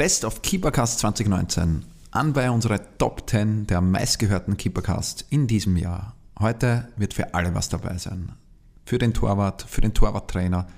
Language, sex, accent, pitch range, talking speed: German, male, Austrian, 100-115 Hz, 155 wpm